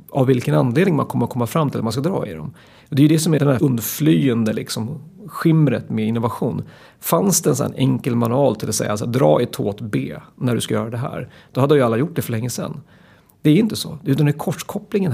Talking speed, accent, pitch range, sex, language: 270 wpm, native, 115-150 Hz, male, Swedish